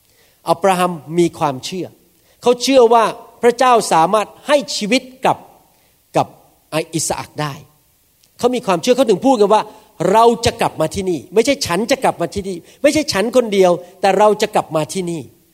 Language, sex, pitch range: Thai, male, 160-225 Hz